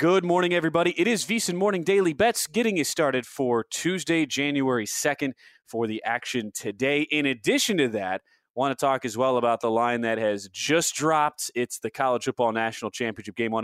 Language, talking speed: English, 195 wpm